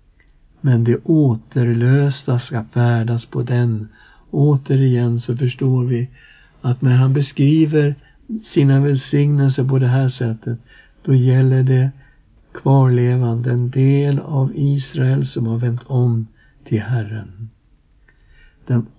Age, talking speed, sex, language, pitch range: 60-79, 115 wpm, male, Swedish, 120-140 Hz